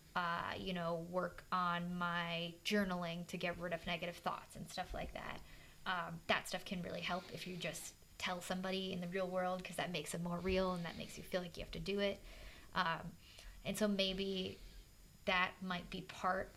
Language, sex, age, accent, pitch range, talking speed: English, female, 20-39, American, 175-195 Hz, 205 wpm